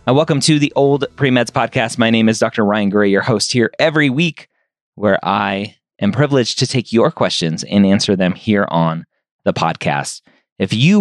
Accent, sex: American, male